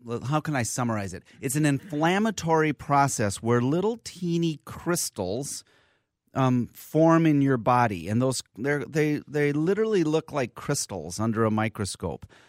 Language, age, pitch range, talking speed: English, 30-49, 105-145 Hz, 140 wpm